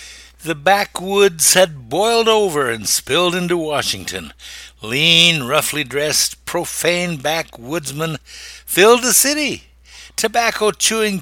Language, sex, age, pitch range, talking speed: English, male, 60-79, 135-180 Hz, 90 wpm